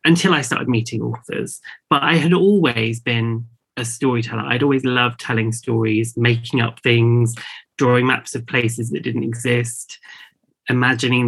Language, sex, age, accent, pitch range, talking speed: English, male, 30-49, British, 115-135 Hz, 150 wpm